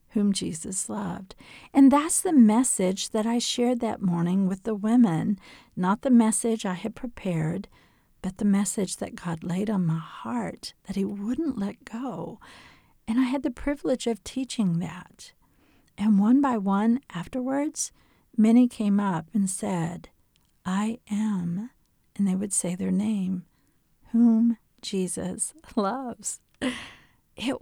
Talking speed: 140 wpm